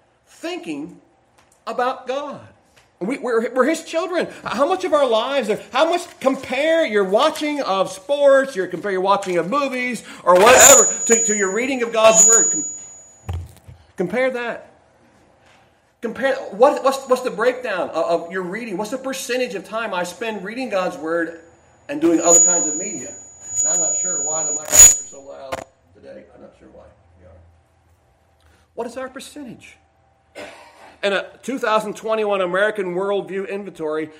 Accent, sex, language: American, male, English